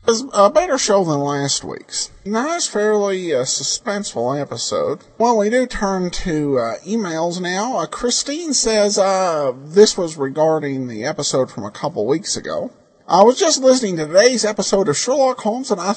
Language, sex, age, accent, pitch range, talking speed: English, male, 50-69, American, 170-260 Hz, 175 wpm